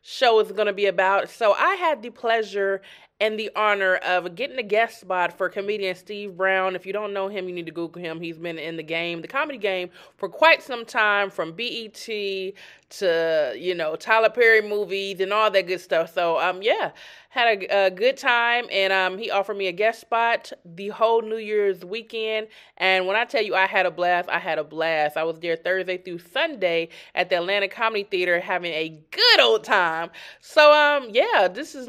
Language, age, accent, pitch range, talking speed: English, 20-39, American, 185-250 Hz, 215 wpm